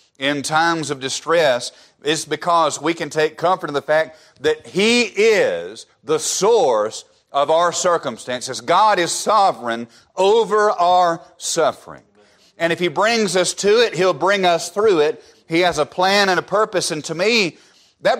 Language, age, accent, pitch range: English, 40-59, American, 150-190 Hz